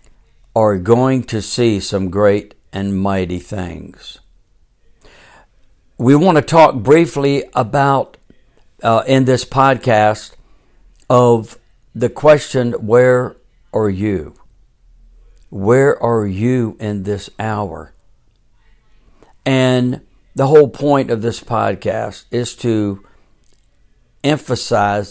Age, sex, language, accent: 60-79, male, English, American